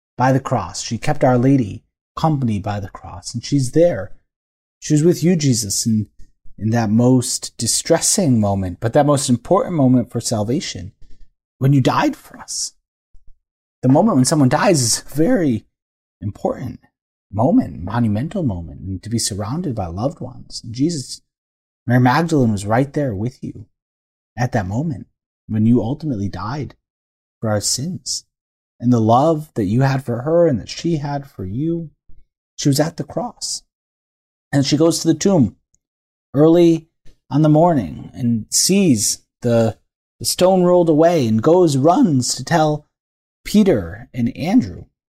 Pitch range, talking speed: 110-155 Hz, 160 wpm